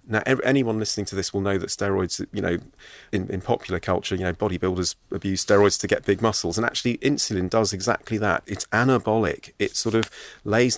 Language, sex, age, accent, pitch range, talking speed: English, male, 30-49, British, 95-115 Hz, 200 wpm